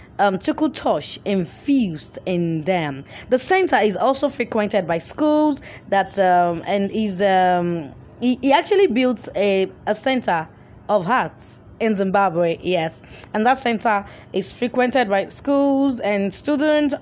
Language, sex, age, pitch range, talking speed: English, female, 20-39, 185-265 Hz, 135 wpm